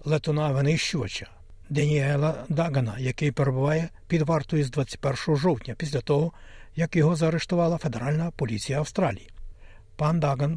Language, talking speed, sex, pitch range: Ukrainian, 115 wpm, male, 125-160 Hz